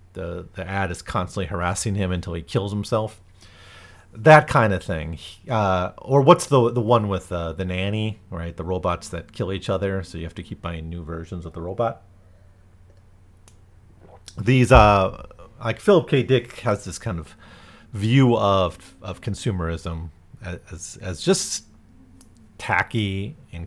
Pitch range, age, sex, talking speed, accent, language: 90-120 Hz, 40-59, male, 155 wpm, American, English